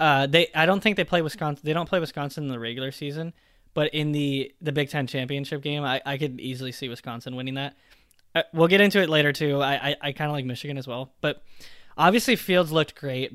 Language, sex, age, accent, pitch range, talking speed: English, male, 20-39, American, 130-160 Hz, 240 wpm